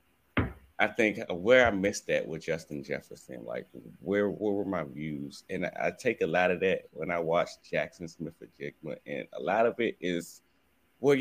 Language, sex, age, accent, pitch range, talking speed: English, male, 30-49, American, 85-110 Hz, 195 wpm